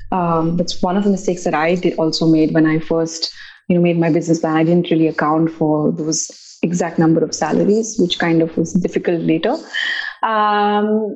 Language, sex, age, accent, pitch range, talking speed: English, female, 30-49, Indian, 170-200 Hz, 200 wpm